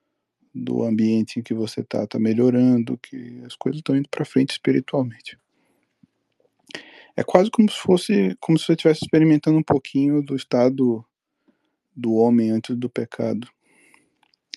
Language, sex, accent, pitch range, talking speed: Portuguese, male, Brazilian, 110-145 Hz, 145 wpm